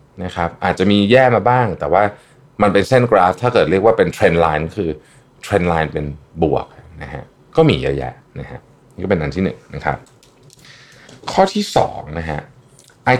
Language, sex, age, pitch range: Thai, male, 20-39, 80-125 Hz